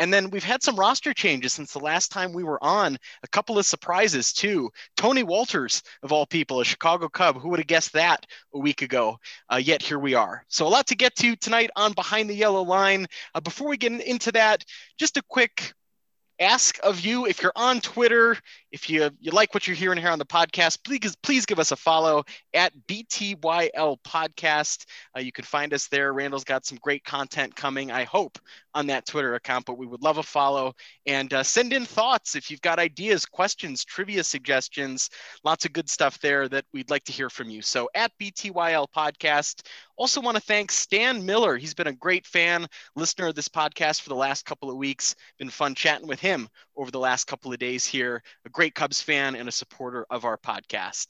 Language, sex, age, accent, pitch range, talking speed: English, male, 20-39, American, 140-205 Hz, 215 wpm